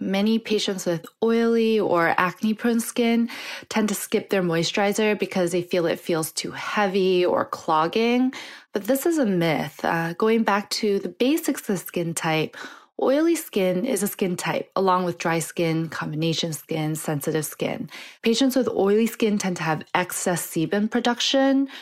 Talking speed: 160 wpm